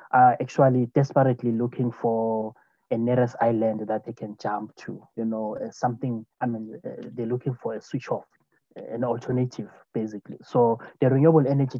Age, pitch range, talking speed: 20-39, 110-125 Hz, 165 wpm